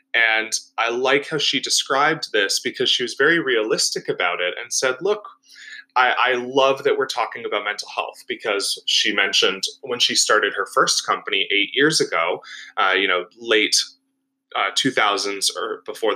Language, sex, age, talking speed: English, male, 20-39, 170 wpm